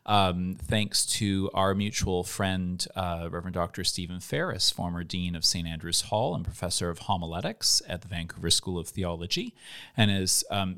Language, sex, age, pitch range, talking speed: English, male, 30-49, 90-105 Hz, 165 wpm